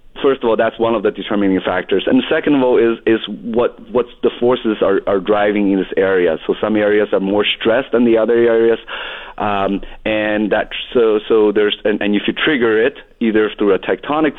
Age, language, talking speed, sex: 30-49, English, 215 wpm, male